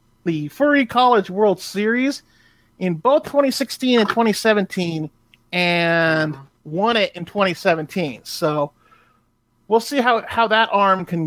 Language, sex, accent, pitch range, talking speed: English, male, American, 160-245 Hz, 120 wpm